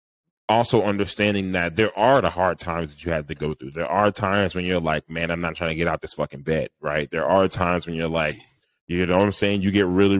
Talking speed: 265 wpm